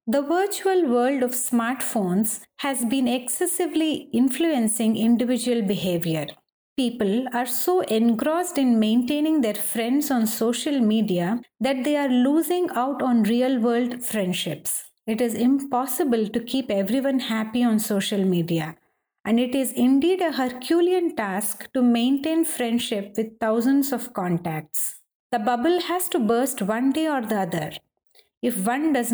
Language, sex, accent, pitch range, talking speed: English, female, Indian, 220-285 Hz, 140 wpm